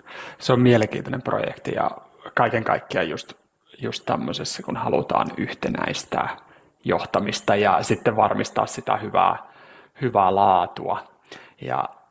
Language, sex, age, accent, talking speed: Finnish, male, 30-49, native, 110 wpm